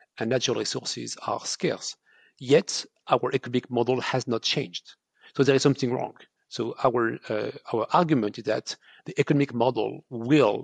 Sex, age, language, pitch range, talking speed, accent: male, 40-59, English, 120-150 Hz, 160 wpm, French